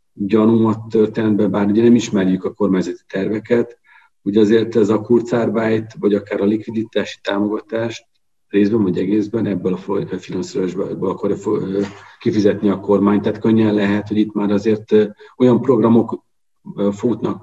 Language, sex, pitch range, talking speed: Hungarian, male, 100-115 Hz, 135 wpm